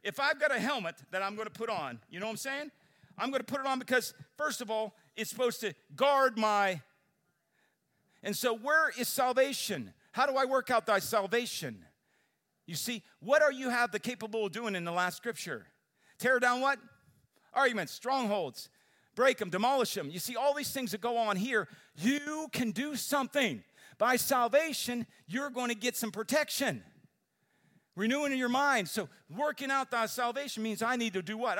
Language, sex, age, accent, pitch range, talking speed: English, male, 50-69, American, 185-265 Hz, 195 wpm